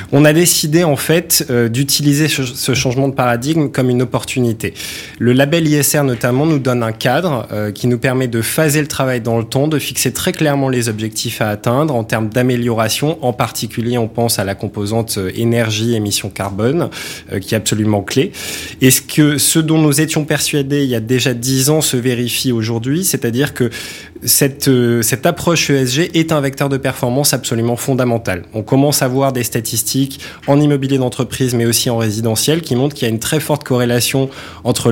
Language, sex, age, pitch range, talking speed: French, male, 20-39, 115-145 Hz, 190 wpm